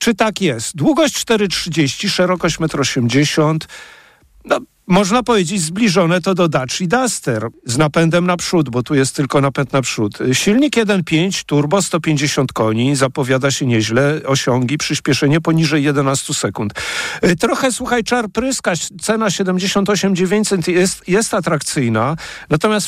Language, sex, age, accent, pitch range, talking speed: Polish, male, 50-69, native, 145-200 Hz, 130 wpm